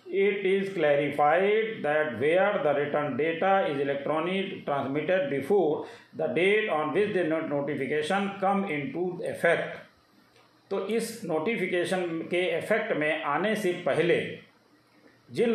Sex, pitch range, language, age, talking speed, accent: male, 145-195 Hz, Hindi, 50-69, 130 wpm, native